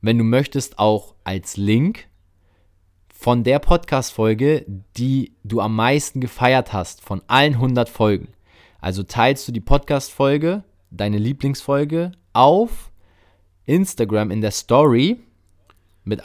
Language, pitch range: German, 95-130 Hz